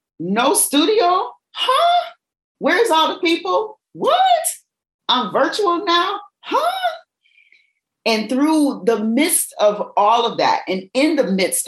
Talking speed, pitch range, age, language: 125 wpm, 175-275 Hz, 40-59, English